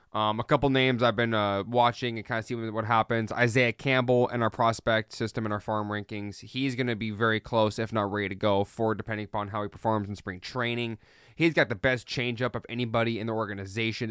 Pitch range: 110-125 Hz